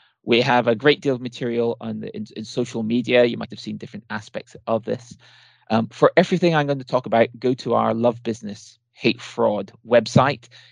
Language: English